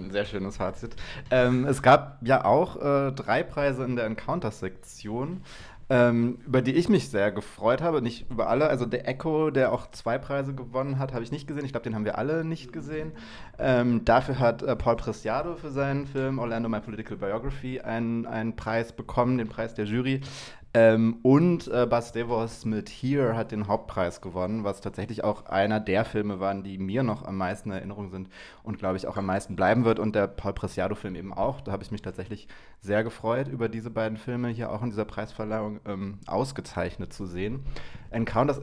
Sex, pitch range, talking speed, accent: male, 105-125 Hz, 195 wpm, German